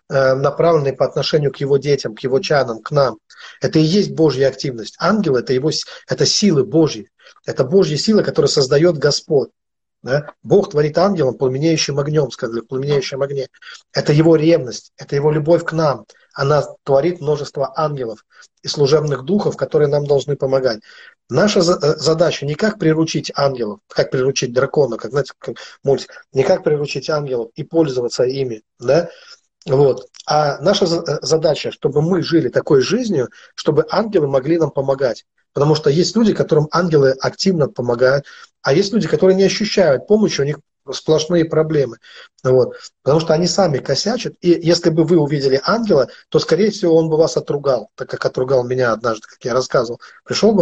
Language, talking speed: Russian, 165 wpm